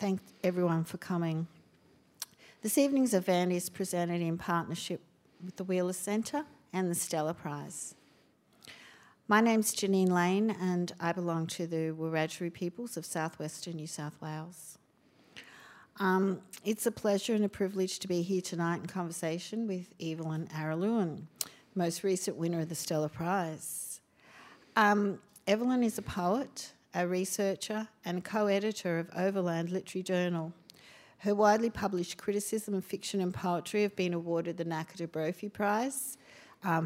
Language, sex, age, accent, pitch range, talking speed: English, female, 60-79, Australian, 170-205 Hz, 140 wpm